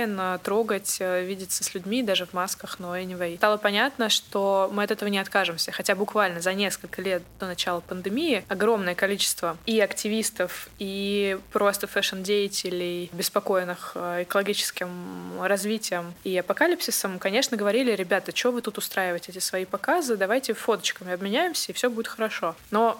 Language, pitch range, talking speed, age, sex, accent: Russian, 185-215 Hz, 150 wpm, 20-39, female, native